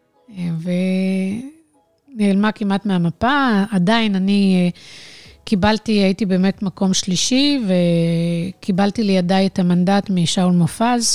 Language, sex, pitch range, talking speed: Hebrew, female, 185-220 Hz, 85 wpm